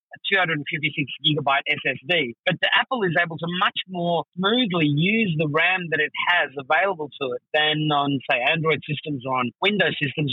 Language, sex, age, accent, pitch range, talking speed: English, male, 30-49, Australian, 145-175 Hz, 200 wpm